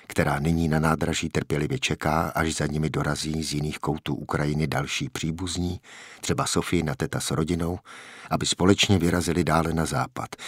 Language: Czech